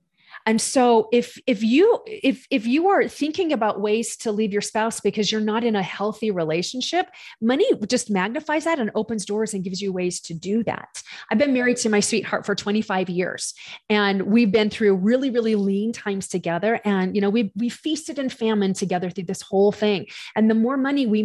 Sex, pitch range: female, 200-270 Hz